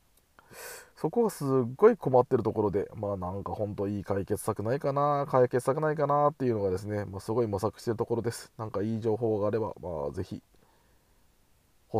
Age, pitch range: 20-39, 105-145 Hz